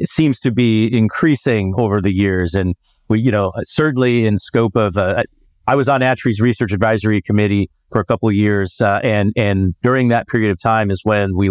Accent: American